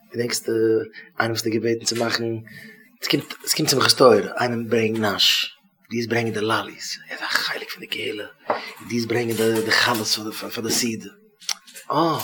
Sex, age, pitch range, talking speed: male, 30-49, 115-160 Hz, 130 wpm